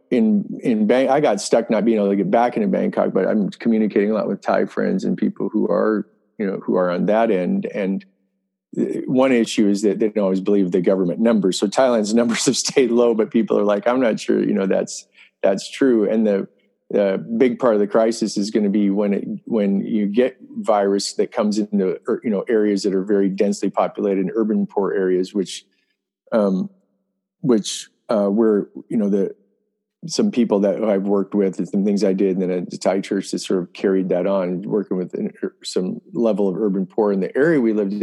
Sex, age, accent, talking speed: male, 40-59, American, 220 wpm